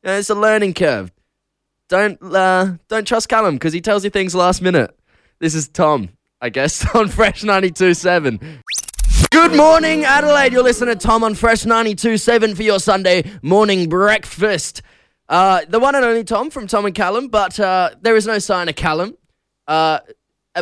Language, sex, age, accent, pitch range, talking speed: English, male, 10-29, Australian, 145-215 Hz, 170 wpm